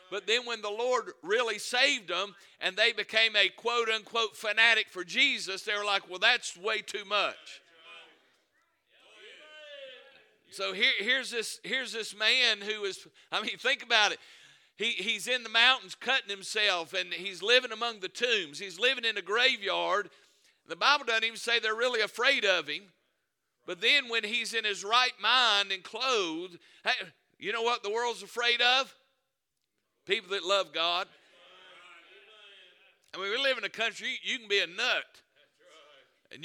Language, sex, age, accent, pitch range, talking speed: English, male, 50-69, American, 200-235 Hz, 165 wpm